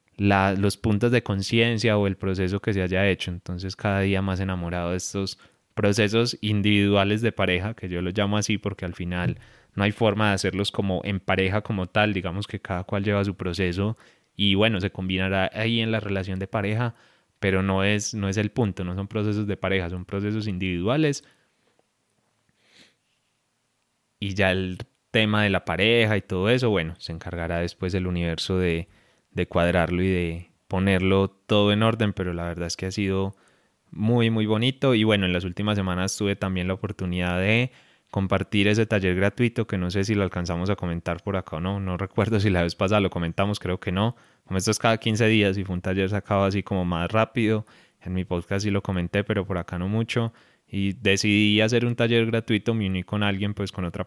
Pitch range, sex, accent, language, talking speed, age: 95-110 Hz, male, Colombian, Spanish, 205 wpm, 20-39